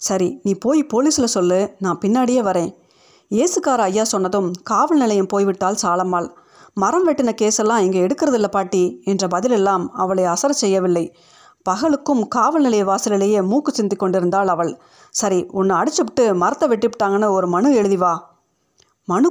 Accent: native